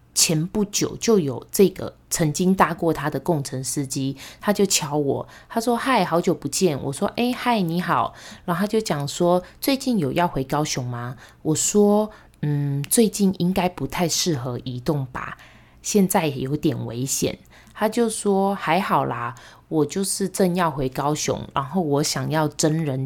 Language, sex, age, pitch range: Chinese, female, 20-39, 140-185 Hz